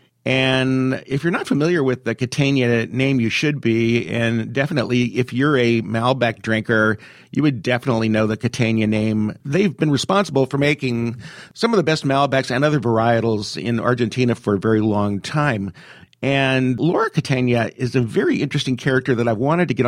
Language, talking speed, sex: English, 180 wpm, male